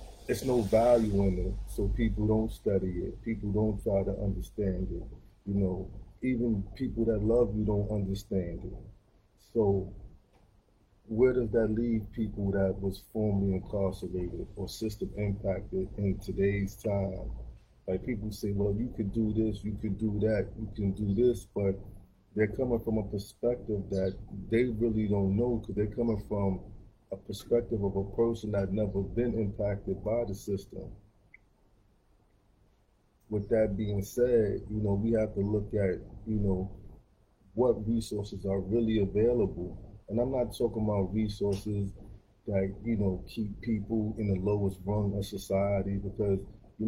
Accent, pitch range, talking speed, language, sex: American, 100-110 Hz, 155 wpm, English, male